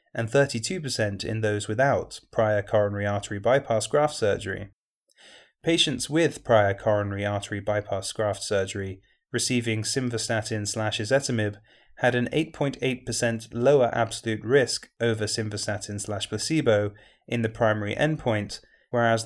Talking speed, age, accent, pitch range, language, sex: 110 wpm, 30-49, British, 105-135 Hz, English, male